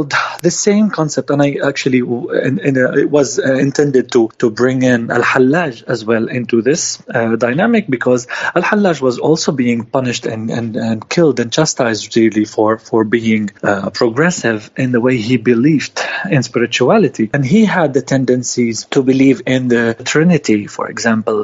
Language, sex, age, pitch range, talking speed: English, male, 30-49, 115-155 Hz, 175 wpm